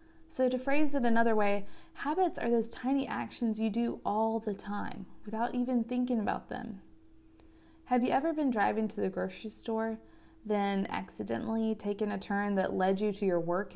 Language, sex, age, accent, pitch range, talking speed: English, female, 20-39, American, 190-245 Hz, 180 wpm